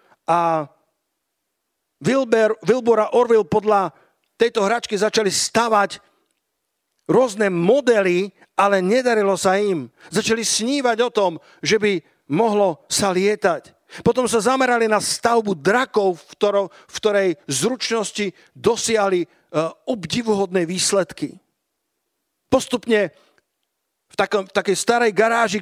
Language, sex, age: Slovak, male, 50-69